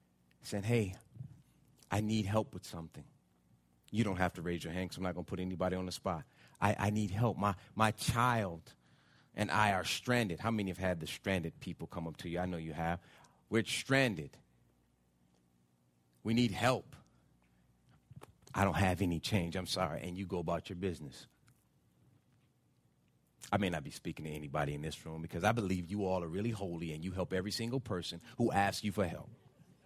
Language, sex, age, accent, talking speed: English, male, 30-49, American, 195 wpm